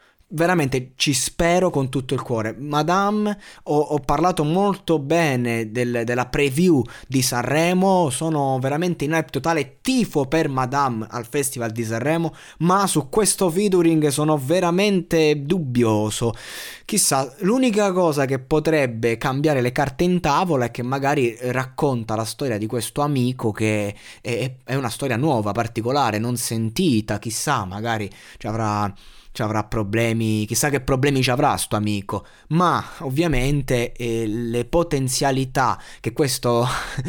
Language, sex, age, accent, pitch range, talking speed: Italian, male, 20-39, native, 115-160 Hz, 140 wpm